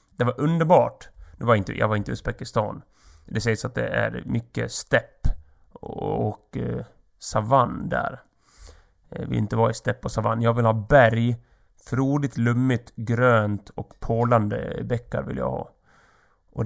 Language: Swedish